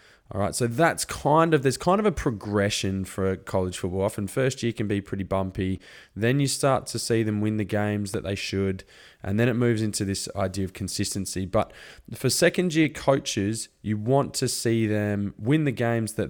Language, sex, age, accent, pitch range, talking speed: English, male, 20-39, Australian, 95-120 Hz, 205 wpm